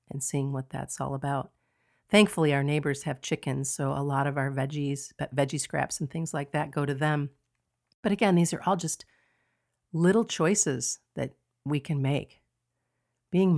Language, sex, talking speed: English, female, 170 wpm